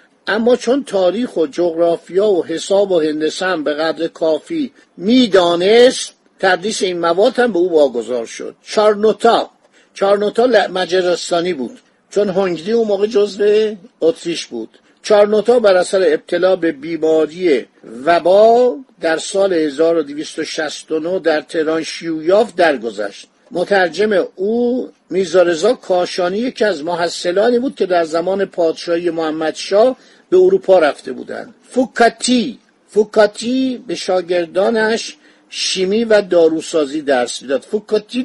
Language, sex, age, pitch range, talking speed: Persian, male, 50-69, 165-220 Hz, 110 wpm